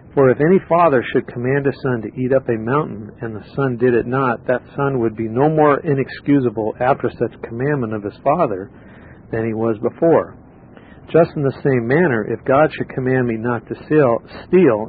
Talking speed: 200 wpm